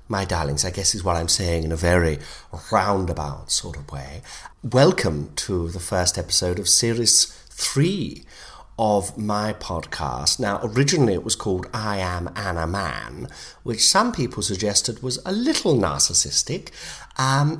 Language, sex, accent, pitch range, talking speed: English, male, British, 80-110 Hz, 150 wpm